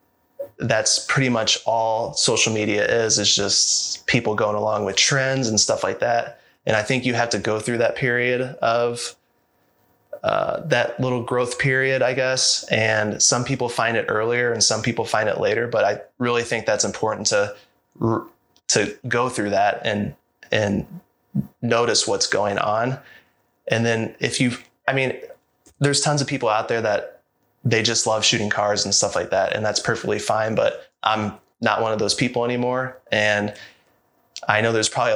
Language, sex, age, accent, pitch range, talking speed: English, male, 20-39, American, 105-130 Hz, 175 wpm